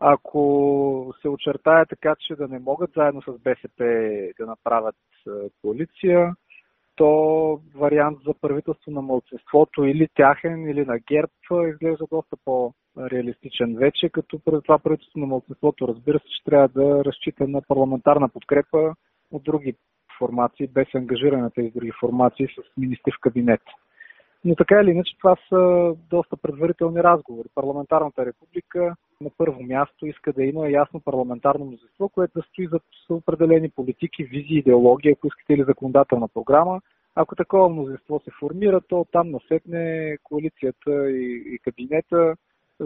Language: Bulgarian